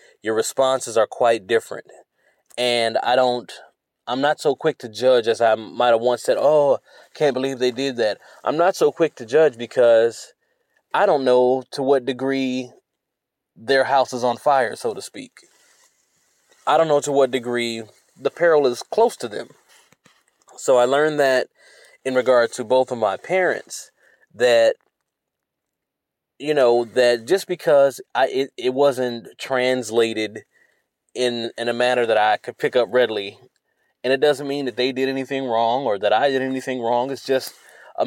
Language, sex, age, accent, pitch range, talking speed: English, male, 20-39, American, 120-145 Hz, 170 wpm